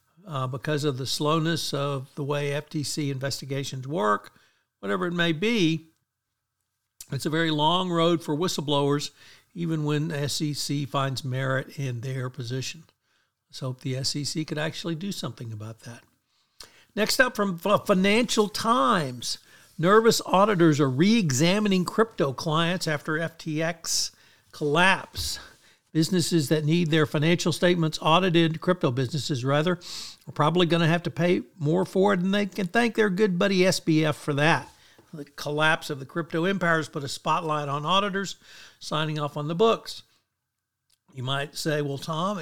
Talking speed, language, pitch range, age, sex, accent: 150 wpm, English, 140-175 Hz, 60-79, male, American